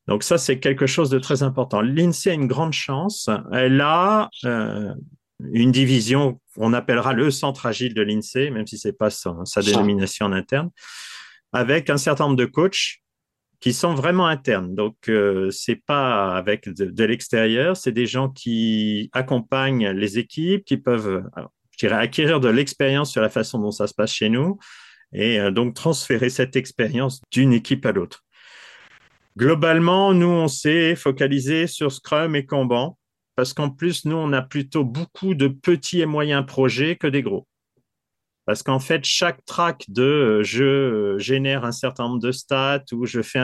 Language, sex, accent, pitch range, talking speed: French, male, French, 115-145 Hz, 175 wpm